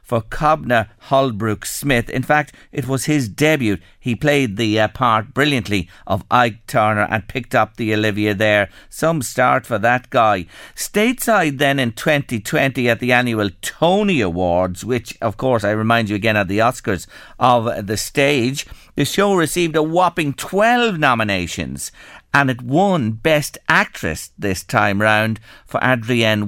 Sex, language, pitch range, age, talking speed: male, English, 110-155 Hz, 50-69, 155 wpm